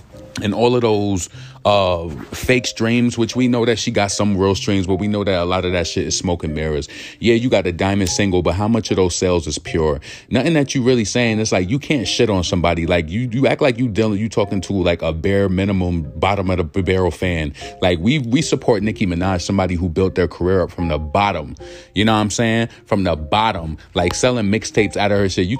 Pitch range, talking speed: 95-120 Hz, 245 wpm